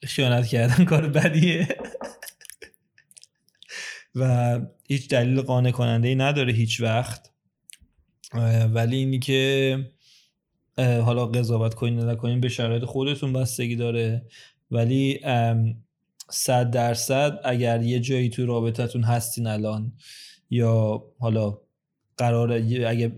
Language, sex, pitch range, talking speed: Persian, male, 120-145 Hz, 105 wpm